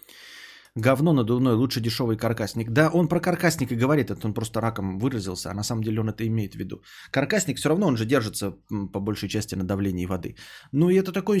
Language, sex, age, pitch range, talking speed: Bulgarian, male, 20-39, 105-135 Hz, 215 wpm